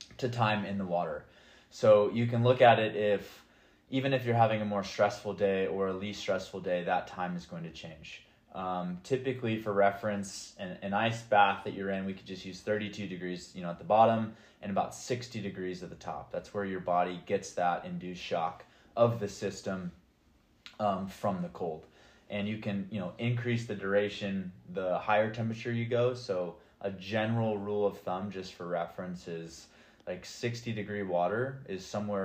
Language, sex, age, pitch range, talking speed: English, male, 20-39, 90-105 Hz, 195 wpm